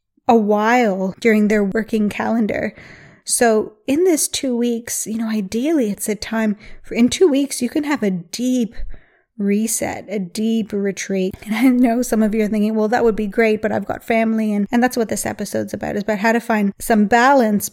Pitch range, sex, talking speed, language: 205-230 Hz, female, 205 wpm, English